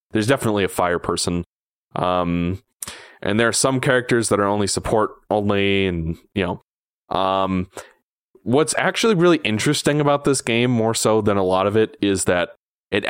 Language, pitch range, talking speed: English, 100-115 Hz, 170 wpm